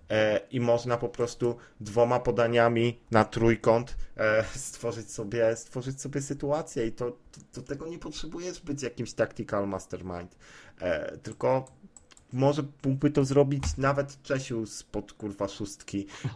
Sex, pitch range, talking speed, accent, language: male, 105-125 Hz, 130 wpm, native, Polish